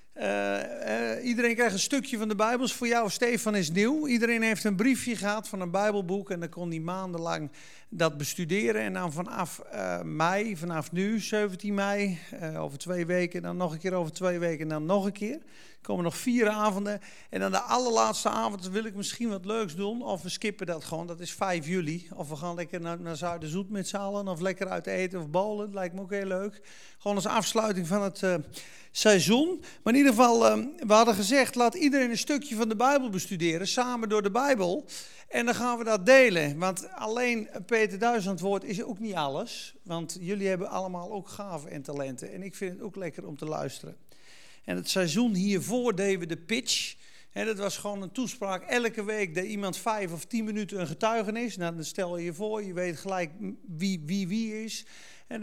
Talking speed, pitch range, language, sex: 210 wpm, 175-220 Hz, Dutch, male